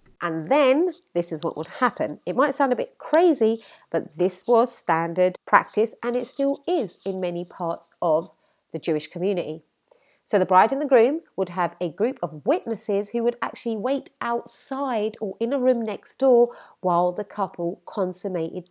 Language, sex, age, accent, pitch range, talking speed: English, female, 30-49, British, 180-250 Hz, 180 wpm